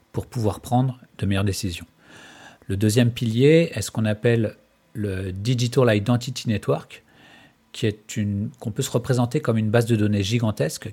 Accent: French